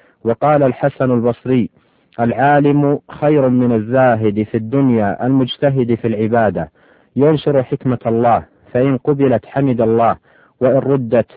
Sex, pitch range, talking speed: male, 115-135 Hz, 110 wpm